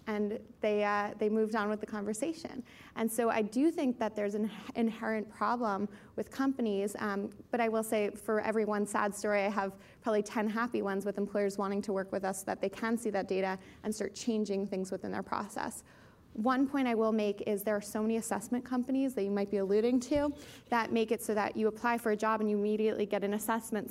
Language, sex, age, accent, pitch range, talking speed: English, female, 20-39, American, 205-225 Hz, 230 wpm